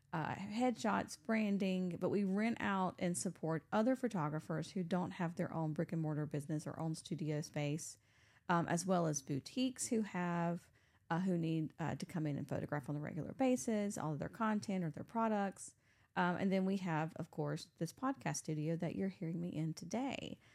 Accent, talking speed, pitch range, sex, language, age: American, 195 wpm, 155-190 Hz, female, English, 40-59